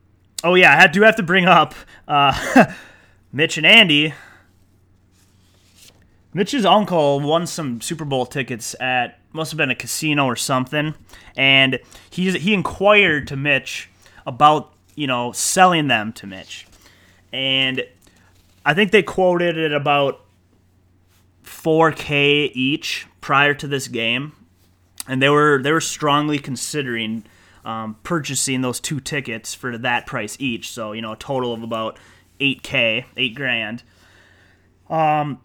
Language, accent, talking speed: English, American, 135 wpm